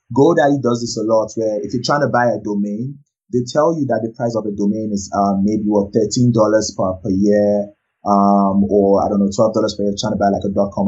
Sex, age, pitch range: male, 20-39, 105-125 Hz